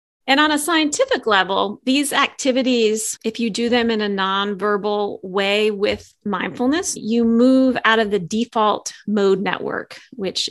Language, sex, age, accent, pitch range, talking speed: English, female, 30-49, American, 195-245 Hz, 150 wpm